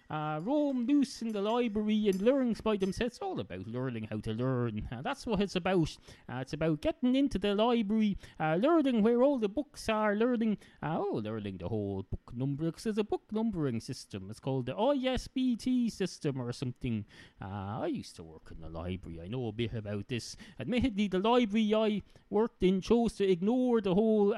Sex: male